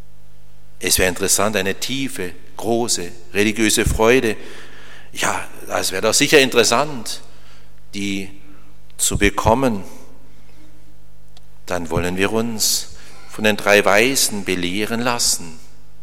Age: 60-79